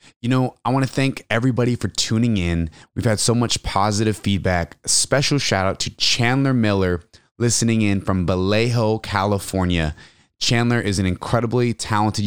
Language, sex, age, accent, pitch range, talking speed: English, male, 20-39, American, 100-125 Hz, 160 wpm